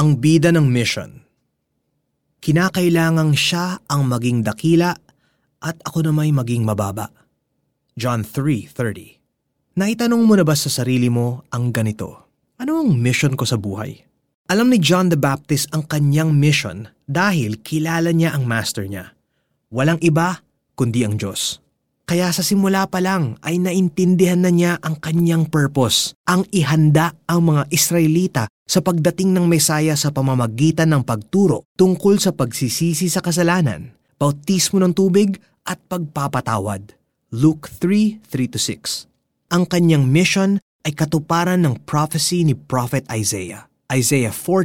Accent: native